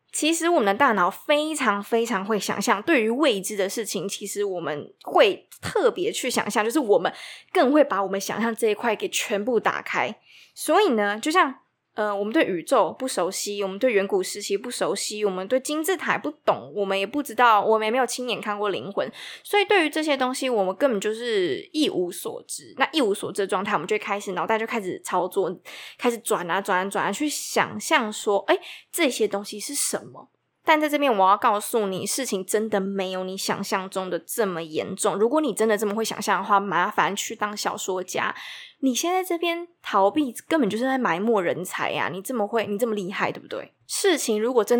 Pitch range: 200-290 Hz